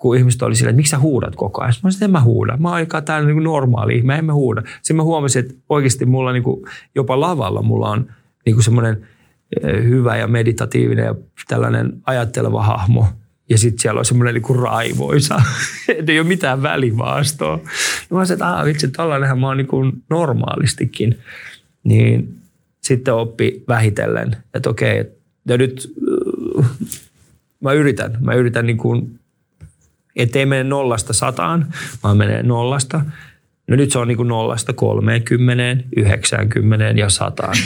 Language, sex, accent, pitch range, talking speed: Finnish, male, native, 115-145 Hz, 150 wpm